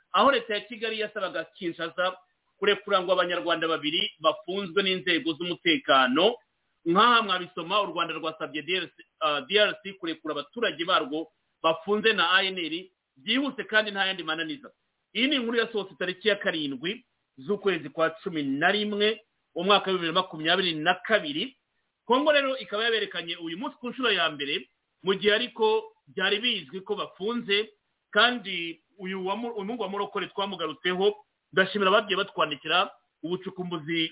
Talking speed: 130 wpm